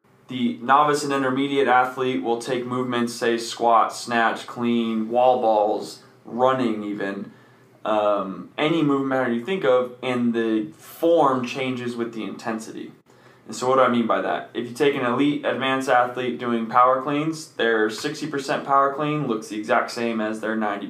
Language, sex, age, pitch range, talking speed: English, male, 20-39, 115-135 Hz, 170 wpm